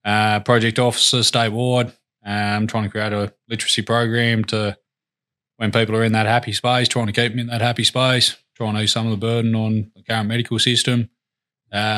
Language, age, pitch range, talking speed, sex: English, 20-39, 110-120 Hz, 210 wpm, male